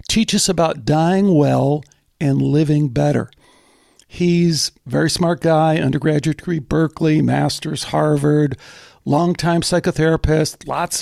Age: 60-79